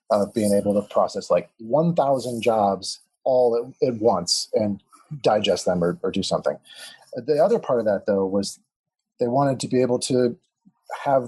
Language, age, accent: English, 30-49, American